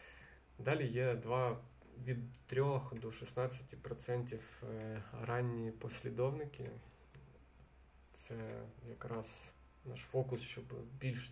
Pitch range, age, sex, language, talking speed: 115-125 Hz, 20-39, male, Ukrainian, 80 wpm